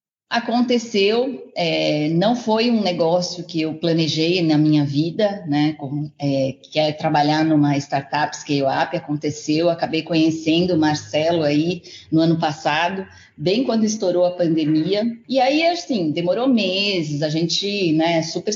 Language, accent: Portuguese, Brazilian